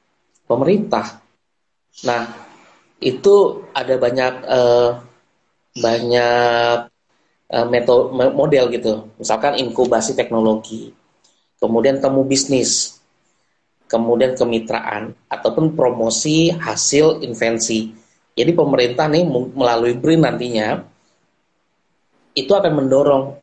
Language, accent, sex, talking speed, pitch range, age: Indonesian, native, male, 80 wpm, 110-130 Hz, 20-39